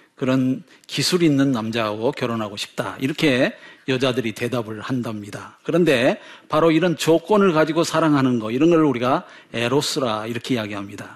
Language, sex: Korean, male